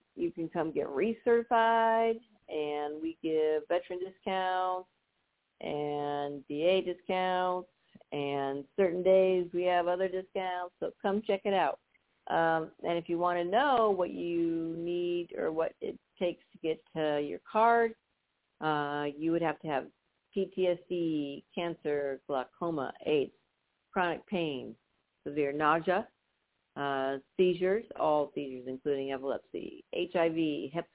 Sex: female